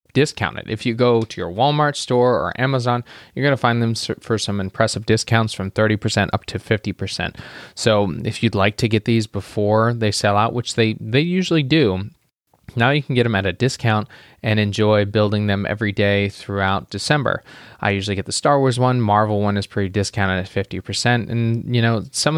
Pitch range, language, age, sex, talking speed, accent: 100-120 Hz, English, 20-39, male, 200 wpm, American